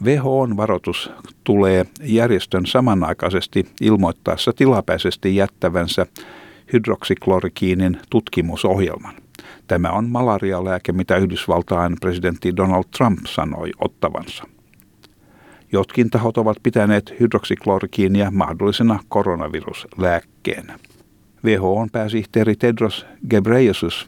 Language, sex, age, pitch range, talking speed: Finnish, male, 60-79, 90-110 Hz, 80 wpm